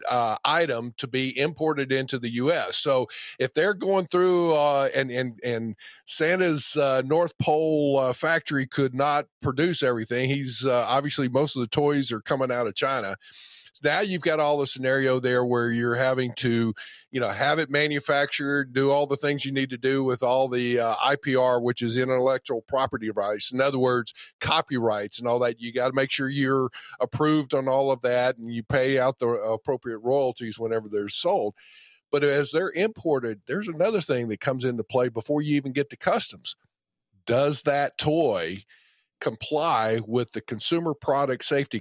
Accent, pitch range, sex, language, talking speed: American, 120-145 Hz, male, English, 185 wpm